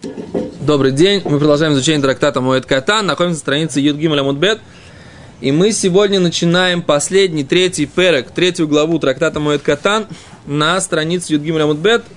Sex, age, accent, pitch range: male, 20-39, native, 140-180 Hz